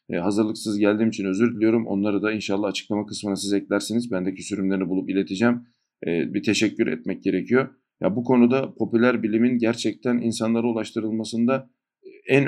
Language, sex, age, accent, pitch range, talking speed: Turkish, male, 50-69, native, 100-120 Hz, 140 wpm